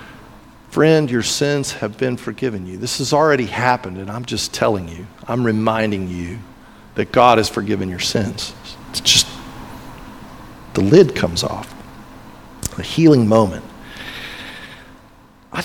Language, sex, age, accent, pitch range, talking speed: English, male, 50-69, American, 120-195 Hz, 135 wpm